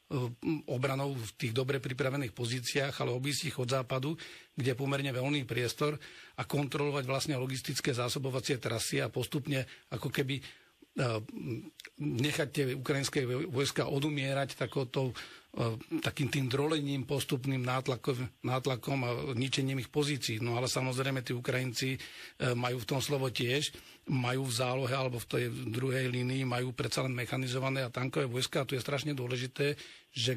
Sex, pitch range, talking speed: male, 125-140 Hz, 140 wpm